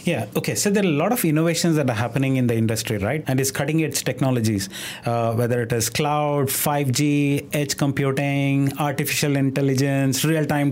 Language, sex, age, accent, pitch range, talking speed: English, male, 30-49, Indian, 130-155 Hz, 180 wpm